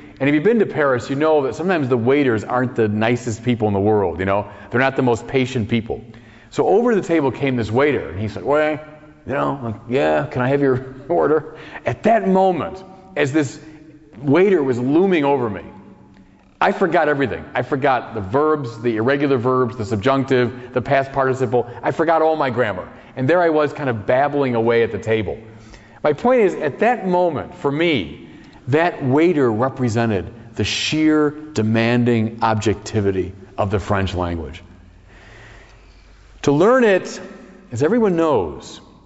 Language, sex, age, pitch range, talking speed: English, male, 40-59, 105-145 Hz, 170 wpm